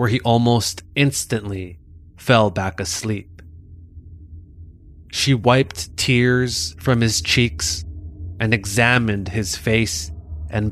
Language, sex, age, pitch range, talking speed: English, male, 20-39, 95-125 Hz, 100 wpm